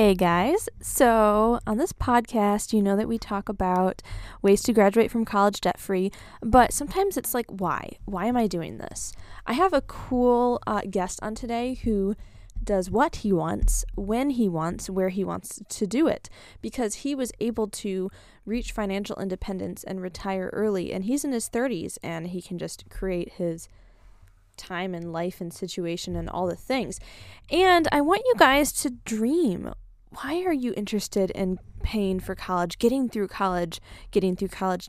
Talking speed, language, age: 175 wpm, English, 10-29